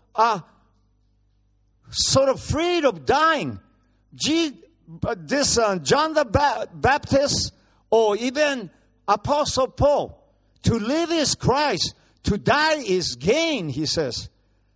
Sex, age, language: male, 50-69, Japanese